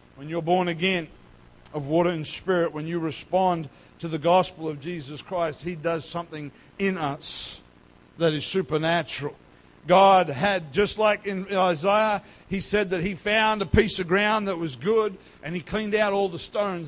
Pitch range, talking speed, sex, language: 170-220 Hz, 180 wpm, male, English